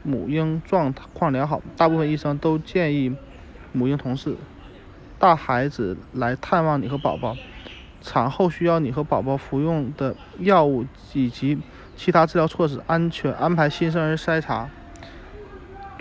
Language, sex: Chinese, male